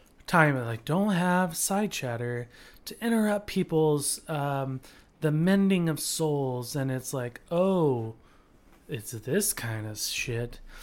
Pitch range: 135-175 Hz